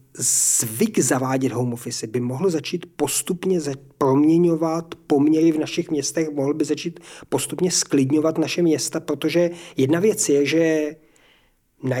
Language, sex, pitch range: Czech, male, 140-165 Hz